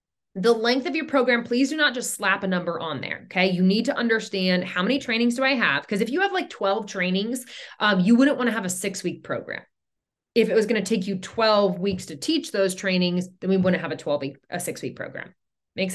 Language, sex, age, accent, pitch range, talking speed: English, female, 20-39, American, 185-255 Hz, 250 wpm